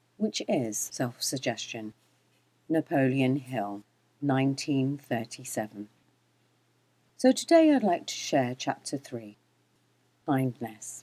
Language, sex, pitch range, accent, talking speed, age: English, female, 110-155 Hz, British, 80 wpm, 50-69